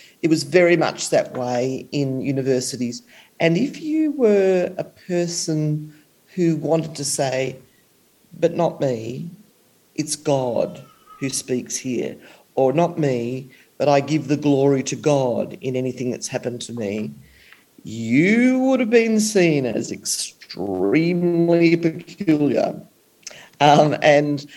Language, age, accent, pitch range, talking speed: English, 40-59, Australian, 130-170 Hz, 125 wpm